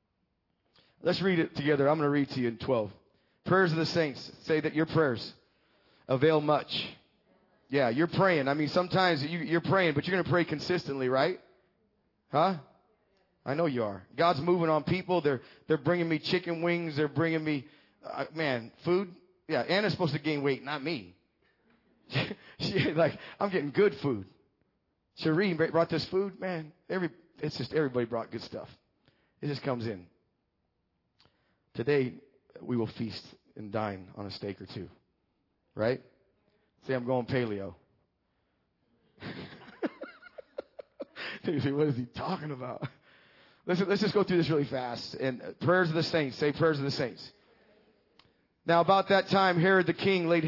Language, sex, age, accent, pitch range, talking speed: English, male, 30-49, American, 130-175 Hz, 160 wpm